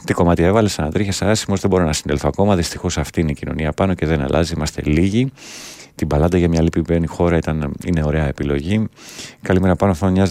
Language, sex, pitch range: Greek, male, 75-95 Hz